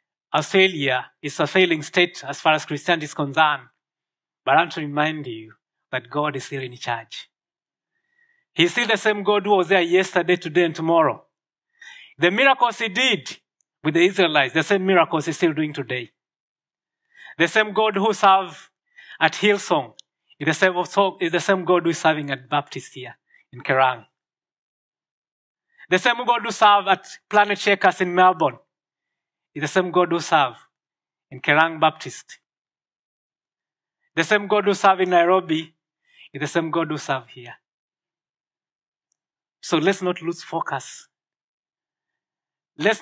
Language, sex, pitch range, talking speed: English, male, 155-200 Hz, 150 wpm